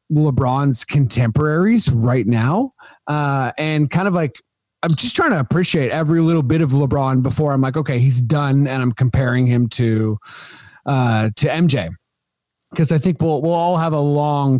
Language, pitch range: English, 130-160 Hz